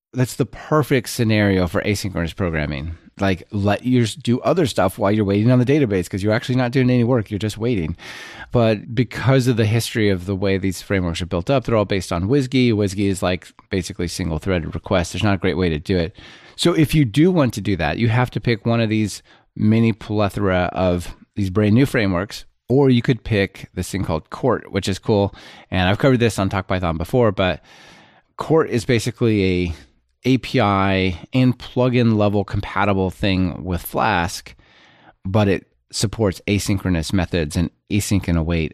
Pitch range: 95-120 Hz